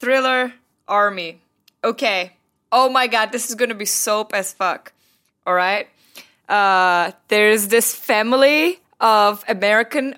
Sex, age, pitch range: female, 10-29, 200-255 Hz